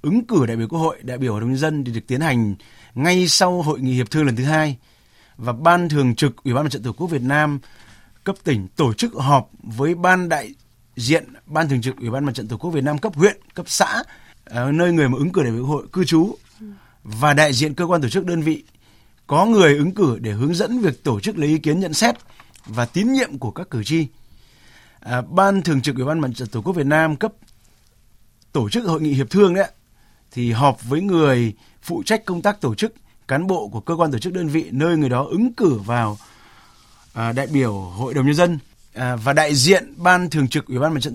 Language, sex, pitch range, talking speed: Vietnamese, male, 125-170 Hz, 235 wpm